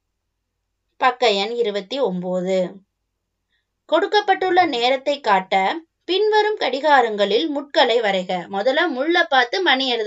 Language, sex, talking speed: Tamil, female, 95 wpm